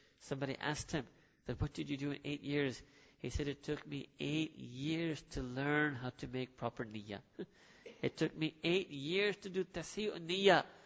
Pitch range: 130-160 Hz